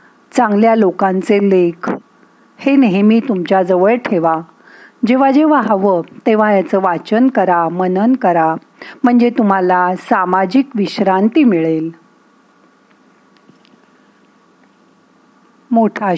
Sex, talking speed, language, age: female, 85 wpm, Marathi, 40-59